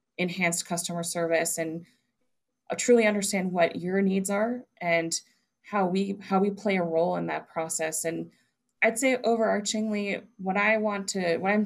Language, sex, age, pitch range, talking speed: English, female, 20-39, 170-205 Hz, 160 wpm